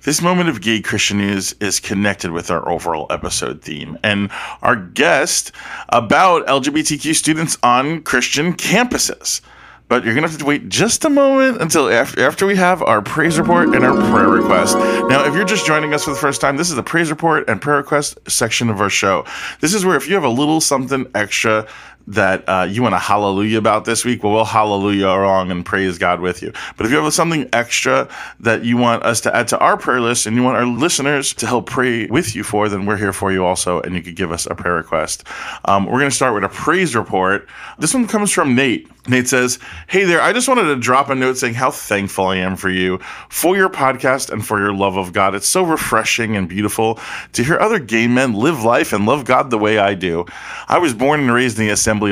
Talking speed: 235 wpm